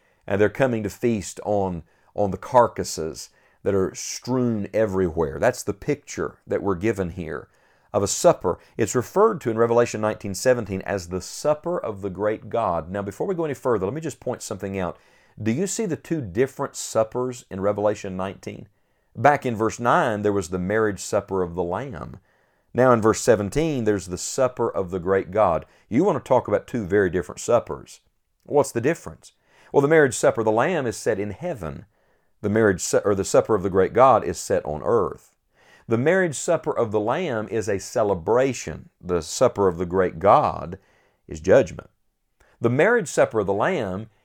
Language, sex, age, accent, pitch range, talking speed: English, male, 50-69, American, 95-125 Hz, 195 wpm